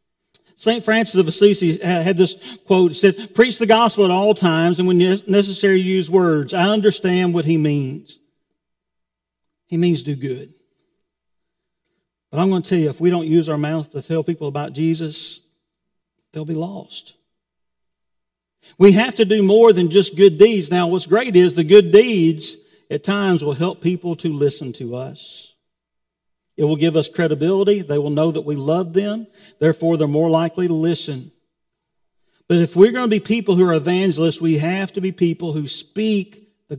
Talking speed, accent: 180 wpm, American